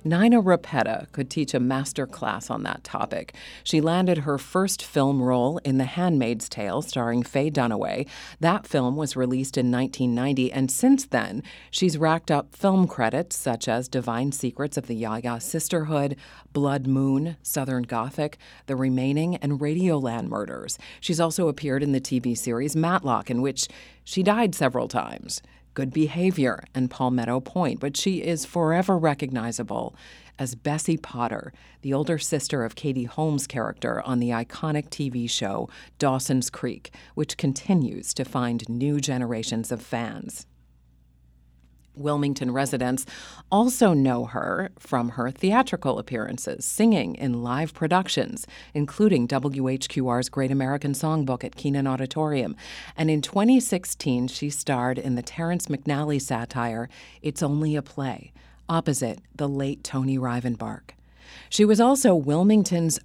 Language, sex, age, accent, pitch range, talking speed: English, female, 40-59, American, 125-160 Hz, 140 wpm